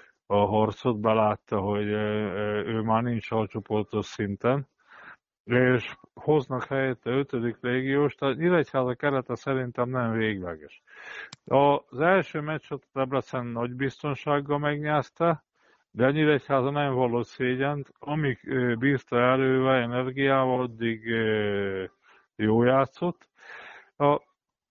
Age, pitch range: 50-69, 115-140 Hz